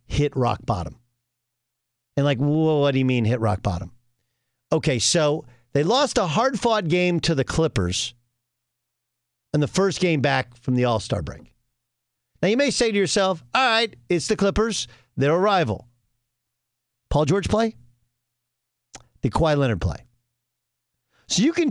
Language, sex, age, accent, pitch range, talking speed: English, male, 50-69, American, 120-190 Hz, 160 wpm